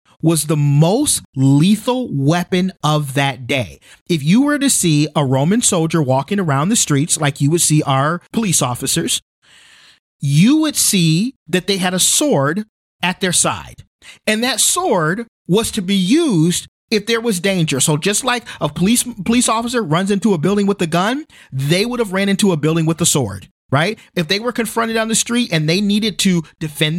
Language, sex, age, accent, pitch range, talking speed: English, male, 40-59, American, 160-240 Hz, 190 wpm